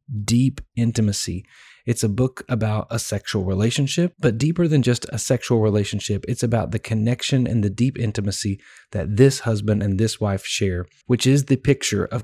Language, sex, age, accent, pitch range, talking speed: English, male, 30-49, American, 105-125 Hz, 175 wpm